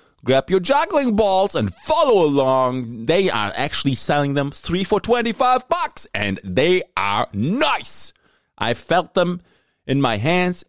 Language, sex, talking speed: English, male, 145 wpm